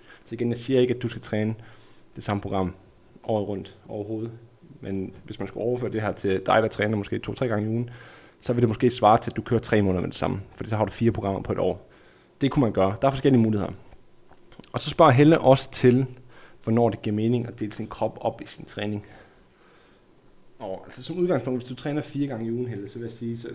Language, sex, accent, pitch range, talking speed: Danish, male, native, 105-125 Hz, 245 wpm